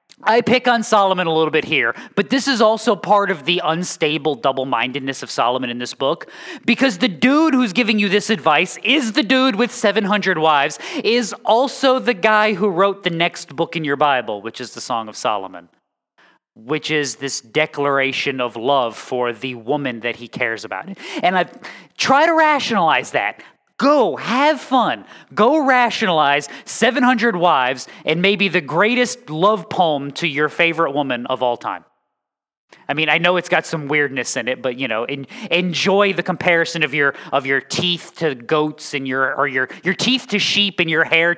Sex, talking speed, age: male, 185 wpm, 30-49